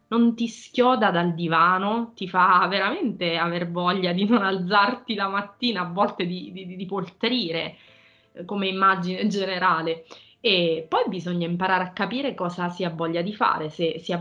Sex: female